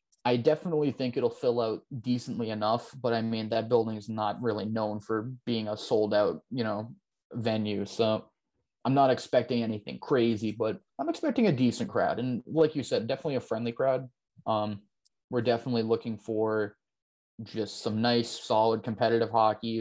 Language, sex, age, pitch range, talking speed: English, male, 20-39, 110-125 Hz, 170 wpm